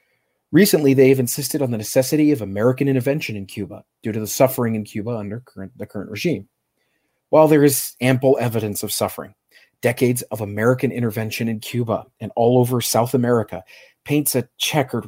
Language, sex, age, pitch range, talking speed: English, male, 40-59, 105-135 Hz, 165 wpm